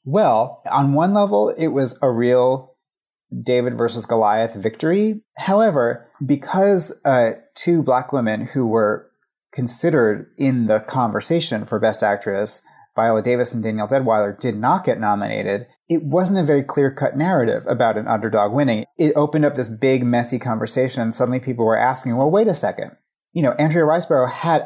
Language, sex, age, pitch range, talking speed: English, male, 30-49, 110-150 Hz, 160 wpm